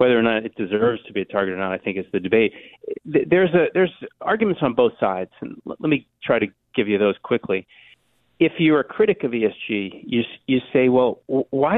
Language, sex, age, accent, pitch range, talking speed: English, male, 30-49, American, 100-140 Hz, 220 wpm